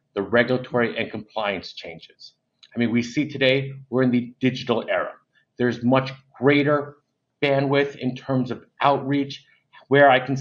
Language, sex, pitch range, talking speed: English, male, 120-140 Hz, 150 wpm